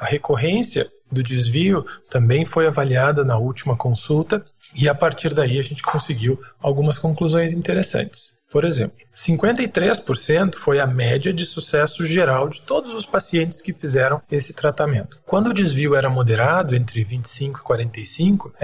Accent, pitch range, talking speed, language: Brazilian, 130-165 Hz, 150 wpm, Portuguese